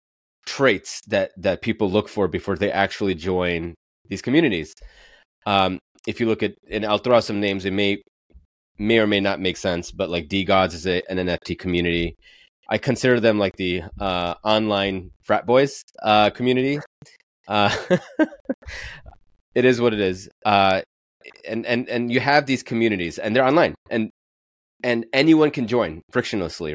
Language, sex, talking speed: English, male, 165 wpm